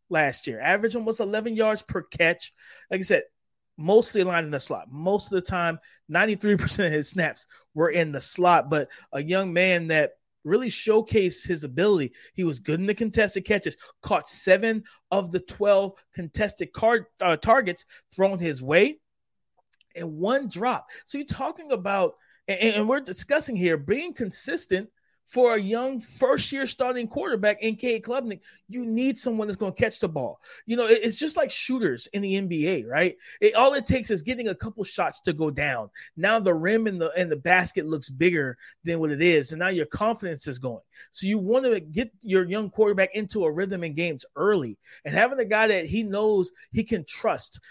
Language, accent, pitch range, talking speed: English, American, 170-225 Hz, 195 wpm